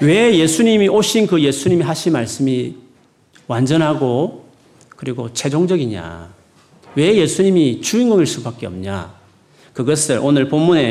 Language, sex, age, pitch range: Korean, male, 40-59, 120-180 Hz